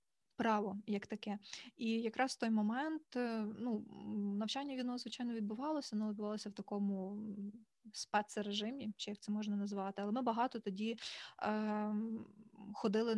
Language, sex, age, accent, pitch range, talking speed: Ukrainian, female, 20-39, native, 205-225 Hz, 130 wpm